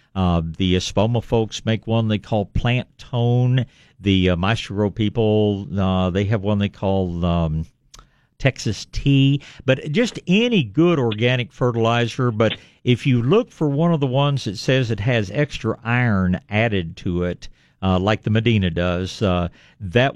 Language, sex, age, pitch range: English, male, 60-79, 95-120 Hz